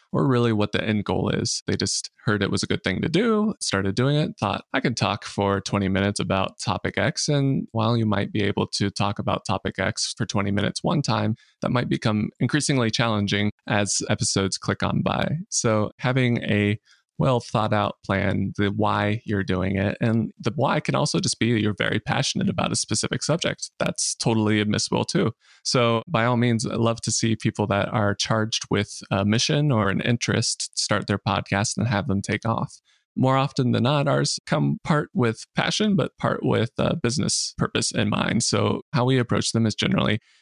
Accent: American